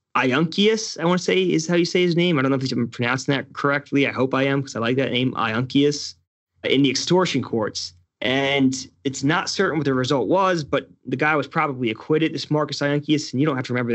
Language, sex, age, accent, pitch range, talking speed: English, male, 20-39, American, 125-150 Hz, 240 wpm